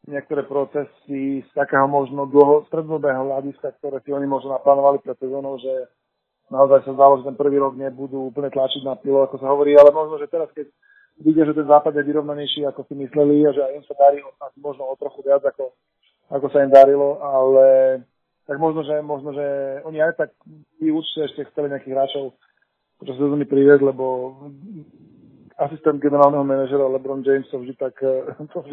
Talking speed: 175 wpm